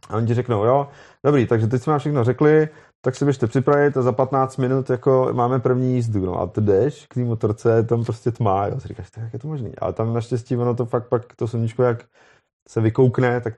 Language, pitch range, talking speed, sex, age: Czech, 105-120 Hz, 240 wpm, male, 30-49